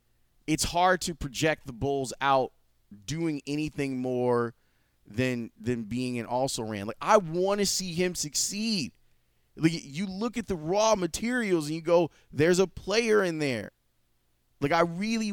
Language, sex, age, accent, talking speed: English, male, 30-49, American, 160 wpm